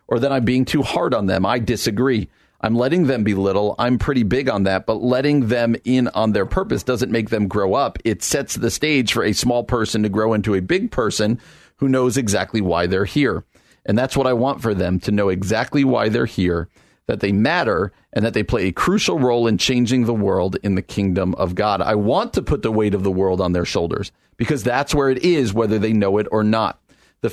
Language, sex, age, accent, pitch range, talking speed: English, male, 40-59, American, 100-130 Hz, 235 wpm